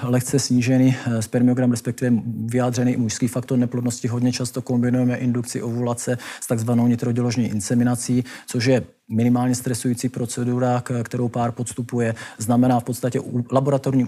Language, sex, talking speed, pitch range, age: Czech, male, 130 wpm, 120-130 Hz, 40-59